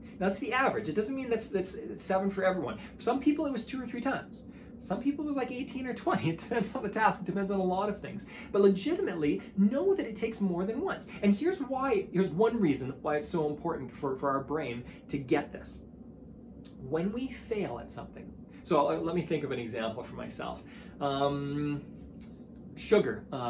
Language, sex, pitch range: English, male, 145-220 Hz